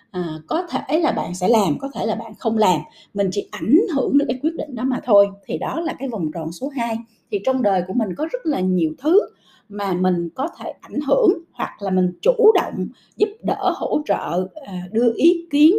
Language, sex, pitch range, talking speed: Vietnamese, female, 195-285 Hz, 230 wpm